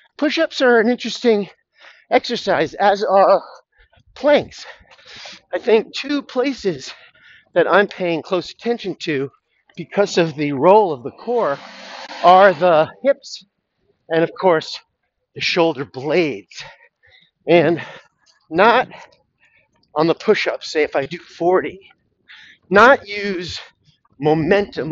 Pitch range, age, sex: 170-235 Hz, 50-69, male